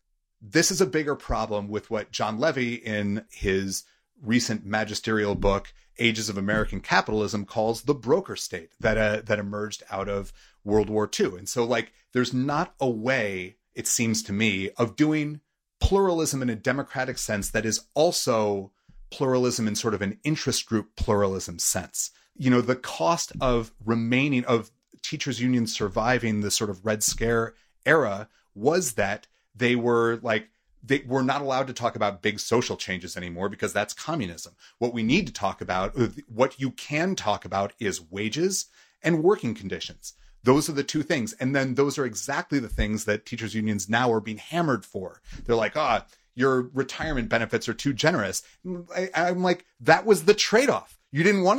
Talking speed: 175 wpm